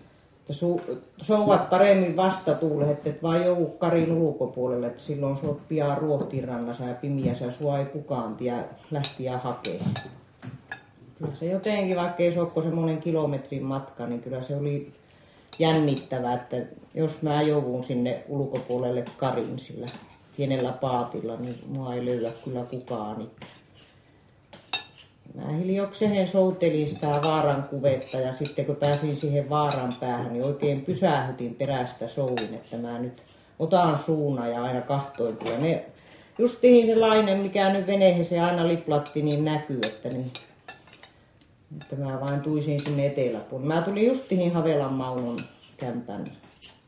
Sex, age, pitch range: female, 40-59, 125-160 Hz